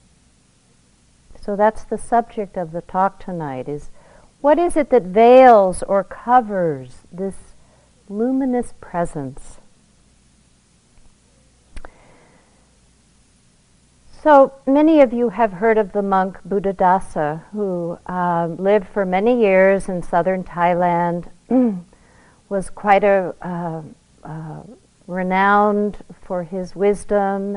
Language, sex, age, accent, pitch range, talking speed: English, female, 50-69, American, 170-220 Hz, 105 wpm